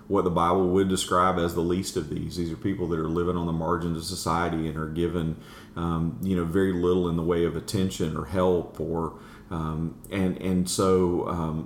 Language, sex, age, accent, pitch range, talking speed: English, male, 40-59, American, 85-95 Hz, 215 wpm